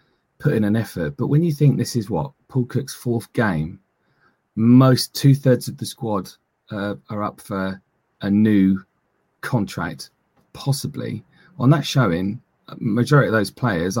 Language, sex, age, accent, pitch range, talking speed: English, male, 30-49, British, 105-140 Hz, 155 wpm